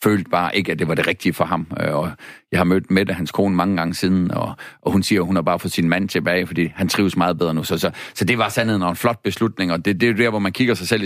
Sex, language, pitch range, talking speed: male, Danish, 90-110 Hz, 305 wpm